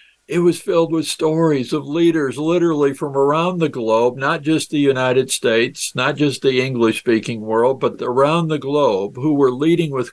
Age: 60-79